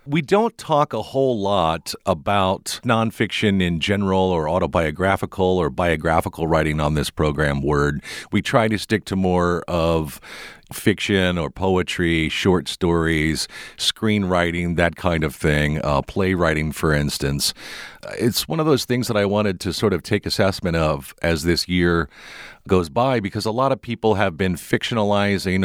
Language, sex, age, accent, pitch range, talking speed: English, male, 50-69, American, 80-105 Hz, 155 wpm